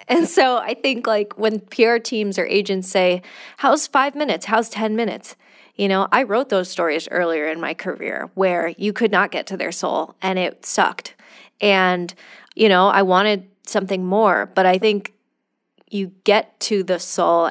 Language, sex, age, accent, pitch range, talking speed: English, female, 20-39, American, 180-205 Hz, 180 wpm